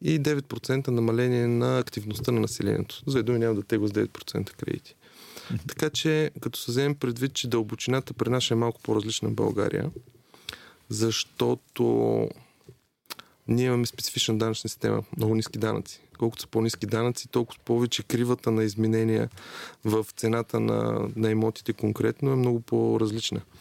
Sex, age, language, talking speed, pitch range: male, 30-49, Bulgarian, 140 wpm, 110-130 Hz